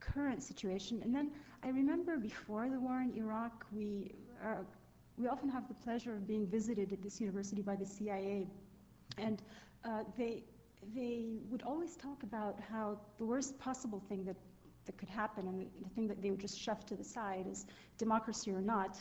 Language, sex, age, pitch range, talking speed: English, female, 40-59, 195-230 Hz, 185 wpm